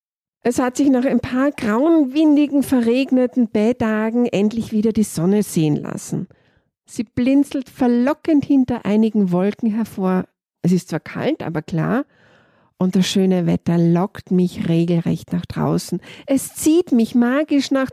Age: 50-69